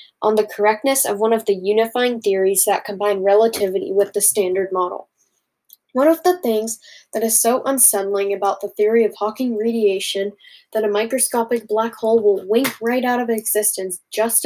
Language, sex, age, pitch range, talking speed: English, female, 10-29, 205-255 Hz, 175 wpm